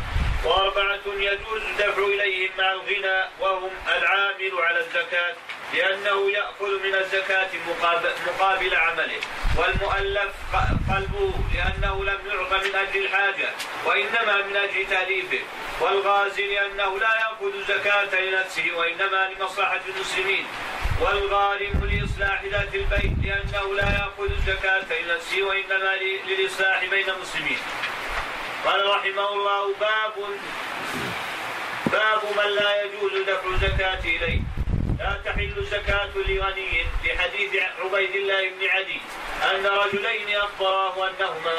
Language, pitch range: Arabic, 190-200 Hz